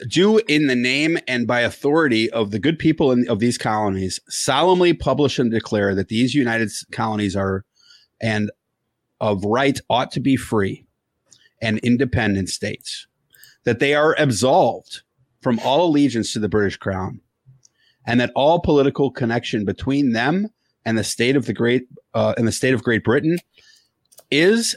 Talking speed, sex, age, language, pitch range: 155 wpm, male, 30-49, English, 110-145 Hz